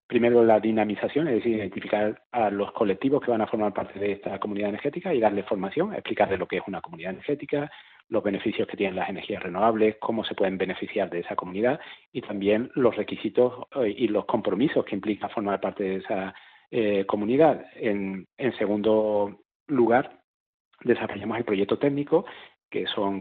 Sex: male